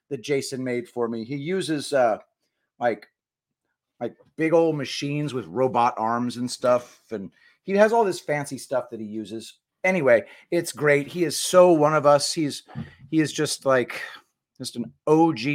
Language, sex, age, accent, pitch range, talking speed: English, male, 40-59, American, 125-160 Hz, 175 wpm